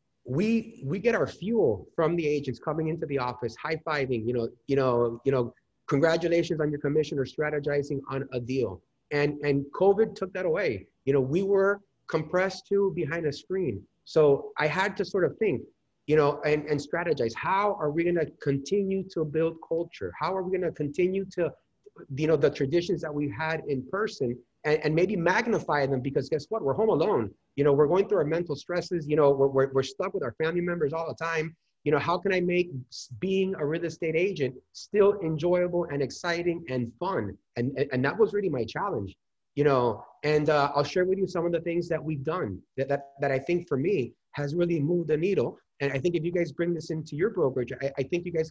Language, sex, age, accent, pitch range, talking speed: English, male, 30-49, American, 140-175 Hz, 220 wpm